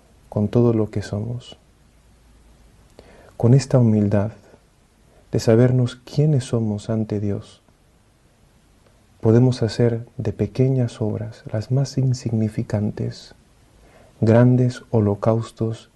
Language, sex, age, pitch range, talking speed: English, male, 40-59, 105-120 Hz, 90 wpm